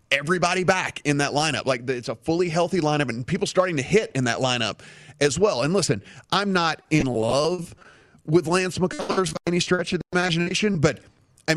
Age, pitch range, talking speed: 30-49, 135-170 Hz, 195 wpm